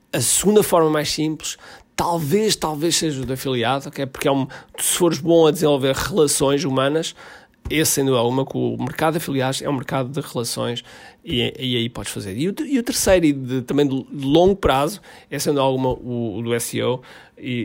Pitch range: 120-150 Hz